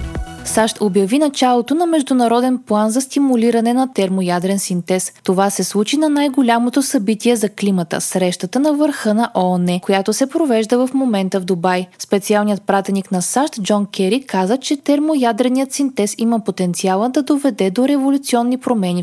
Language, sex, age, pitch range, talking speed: Bulgarian, female, 20-39, 185-265 Hz, 150 wpm